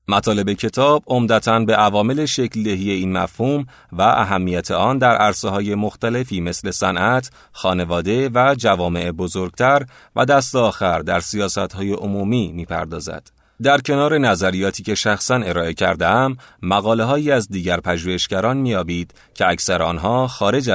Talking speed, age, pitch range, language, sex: 135 wpm, 30-49, 90-125 Hz, Persian, male